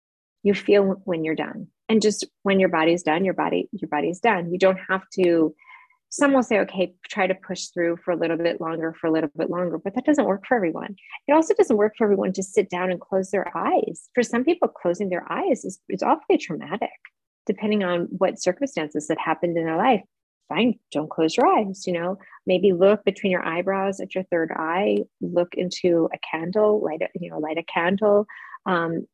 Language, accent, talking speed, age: English, American, 215 wpm, 30-49